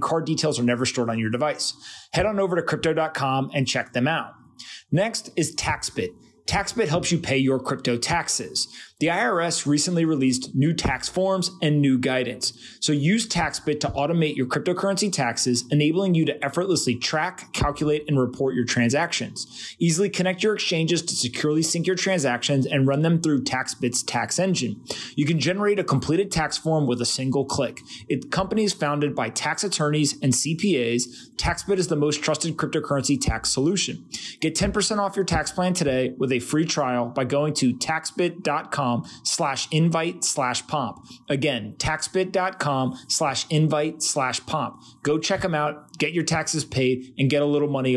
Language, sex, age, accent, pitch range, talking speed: English, male, 30-49, American, 130-165 Hz, 170 wpm